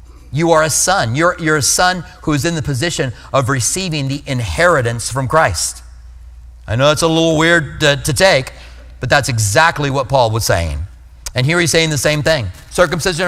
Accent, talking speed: American, 195 wpm